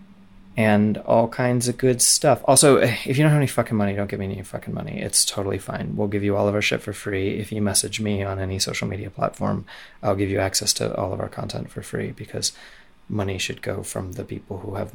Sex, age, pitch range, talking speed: male, 30-49, 105-130 Hz, 245 wpm